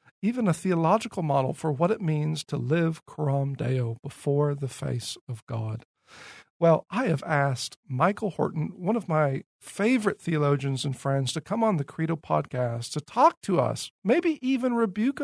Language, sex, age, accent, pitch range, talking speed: English, male, 50-69, American, 135-175 Hz, 170 wpm